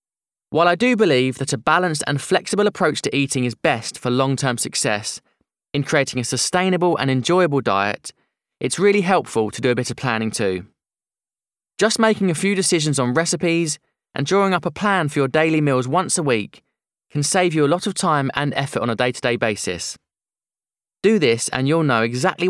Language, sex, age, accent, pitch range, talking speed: English, male, 20-39, British, 125-185 Hz, 190 wpm